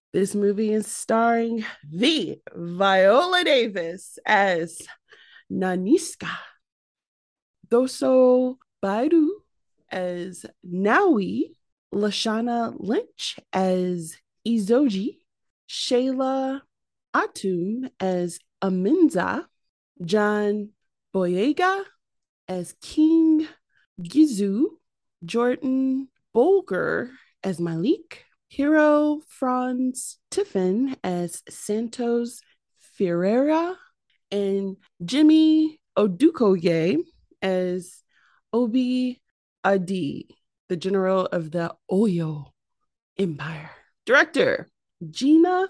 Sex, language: female, English